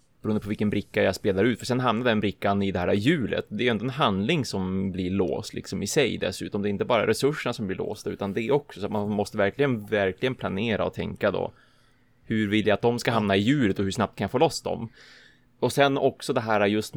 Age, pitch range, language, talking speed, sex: 20-39, 95-110 Hz, Swedish, 260 wpm, male